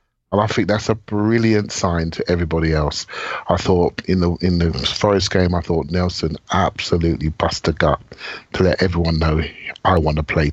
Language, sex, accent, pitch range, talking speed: English, male, British, 85-100 Hz, 180 wpm